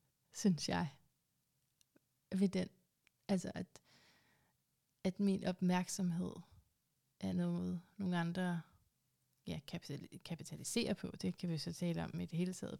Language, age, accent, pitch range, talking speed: Danish, 30-49, native, 175-200 Hz, 120 wpm